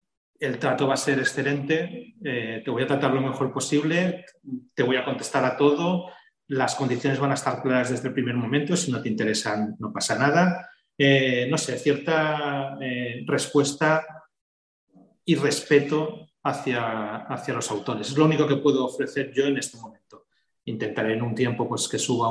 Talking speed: 180 wpm